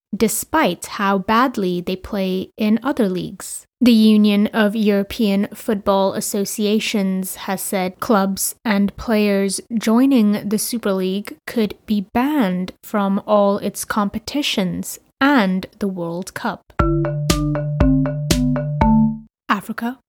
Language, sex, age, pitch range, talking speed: English, female, 20-39, 195-225 Hz, 105 wpm